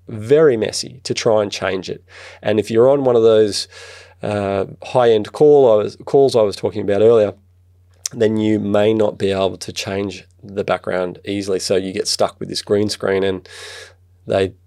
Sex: male